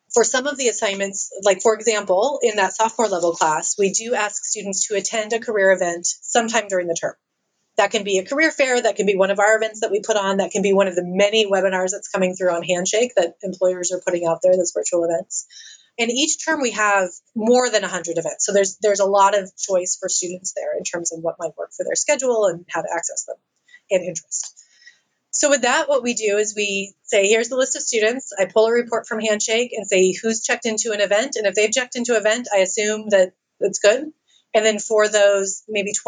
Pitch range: 185-225 Hz